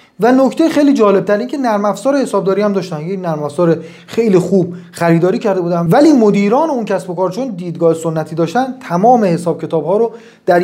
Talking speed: 185 wpm